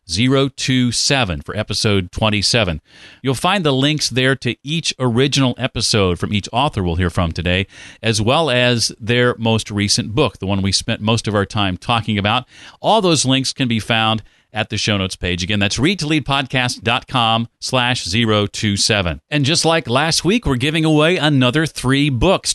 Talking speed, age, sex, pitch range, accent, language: 170 wpm, 40-59, male, 110-150 Hz, American, English